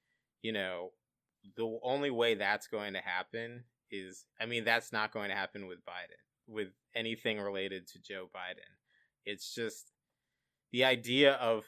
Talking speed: 155 wpm